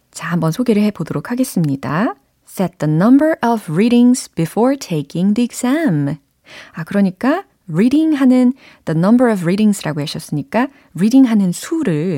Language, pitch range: Korean, 160-240 Hz